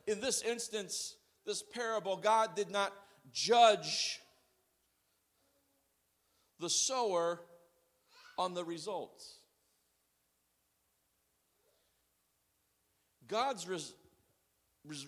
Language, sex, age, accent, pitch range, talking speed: English, male, 50-69, American, 165-225 Hz, 70 wpm